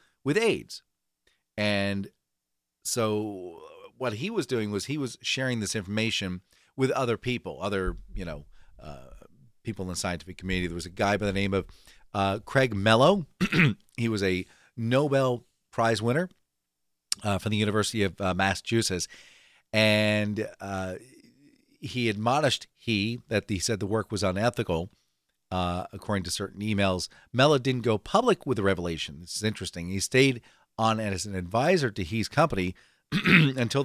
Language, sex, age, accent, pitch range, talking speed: English, male, 40-59, American, 95-120 Hz, 155 wpm